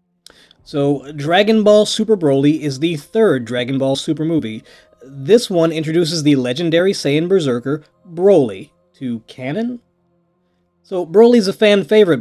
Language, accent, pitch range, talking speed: English, American, 130-180 Hz, 135 wpm